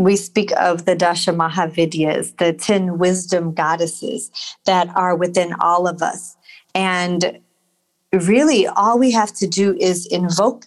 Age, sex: 40-59, female